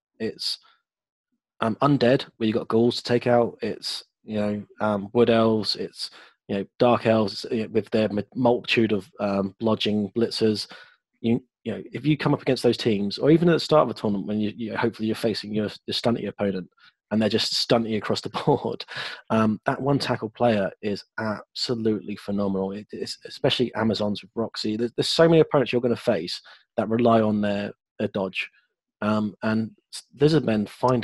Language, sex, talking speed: English, male, 190 wpm